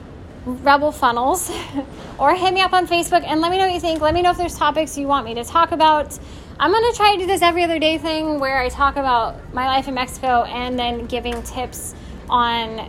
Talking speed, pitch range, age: 235 wpm, 255-335 Hz, 10-29